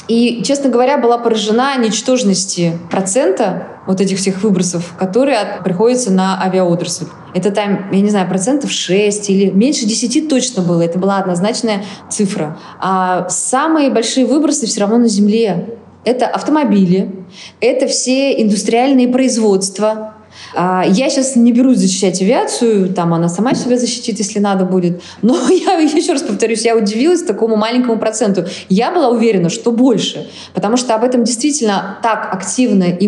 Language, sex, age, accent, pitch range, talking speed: Russian, female, 20-39, native, 195-250 Hz, 150 wpm